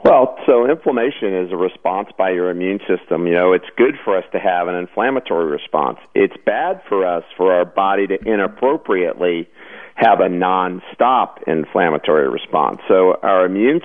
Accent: American